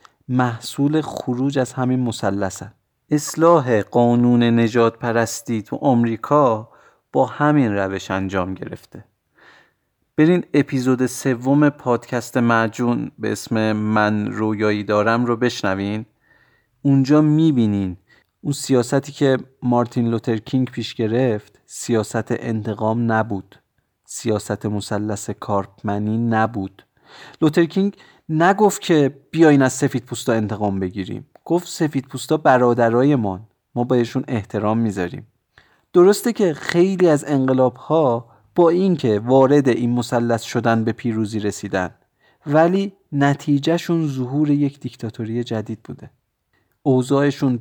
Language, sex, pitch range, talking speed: Persian, male, 110-145 Hz, 105 wpm